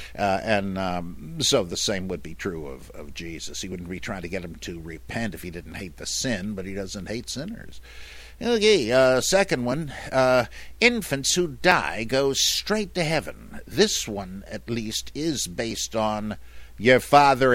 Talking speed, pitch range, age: 180 wpm, 95-135 Hz, 60-79